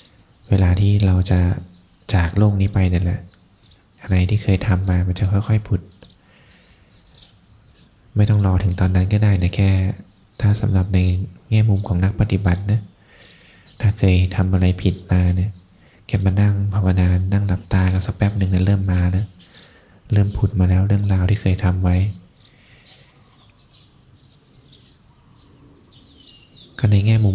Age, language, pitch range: 20-39, Thai, 95-105 Hz